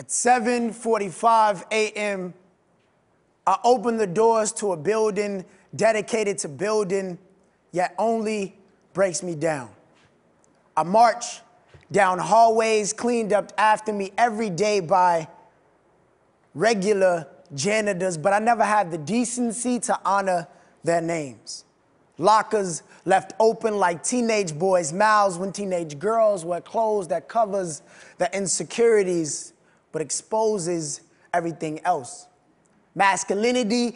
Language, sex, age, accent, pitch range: Chinese, male, 20-39, American, 180-225 Hz